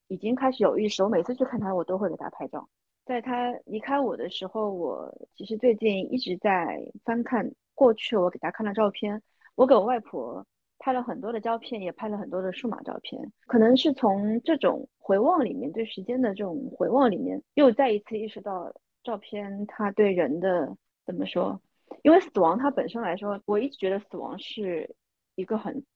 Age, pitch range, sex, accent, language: 30-49, 200-255 Hz, female, native, Chinese